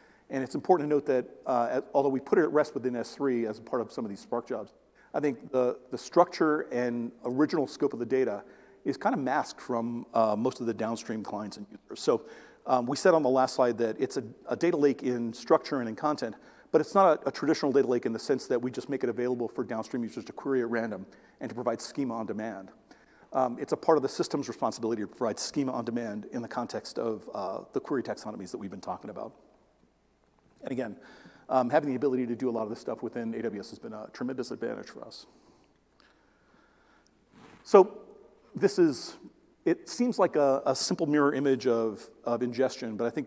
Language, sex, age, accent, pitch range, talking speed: English, male, 40-59, American, 120-150 Hz, 225 wpm